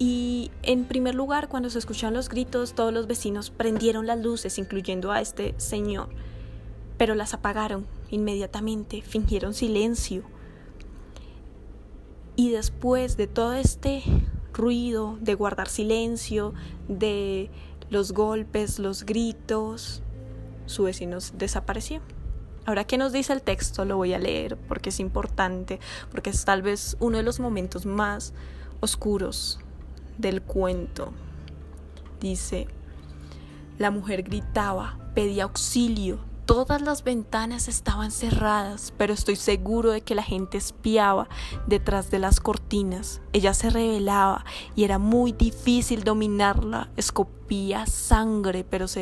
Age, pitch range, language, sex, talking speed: 10-29, 190-225 Hz, Spanish, female, 125 wpm